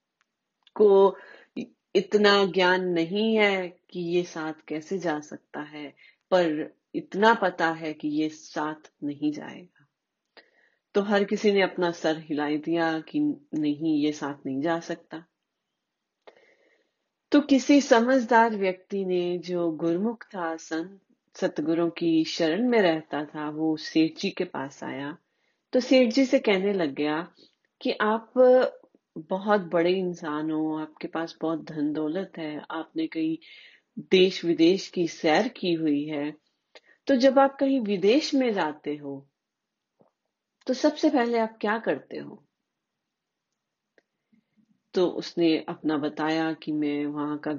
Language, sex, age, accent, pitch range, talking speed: Hindi, female, 30-49, native, 155-215 Hz, 135 wpm